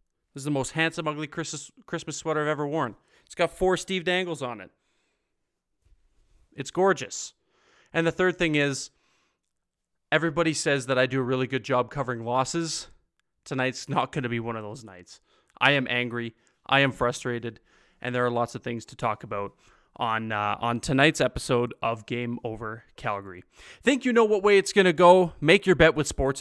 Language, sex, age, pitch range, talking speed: English, male, 30-49, 125-165 Hz, 190 wpm